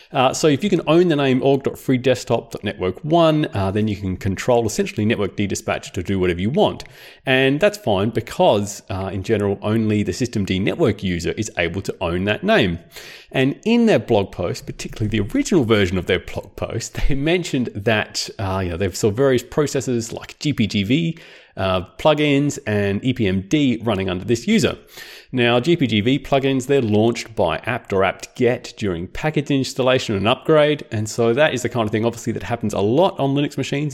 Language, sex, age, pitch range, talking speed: English, male, 30-49, 105-145 Hz, 180 wpm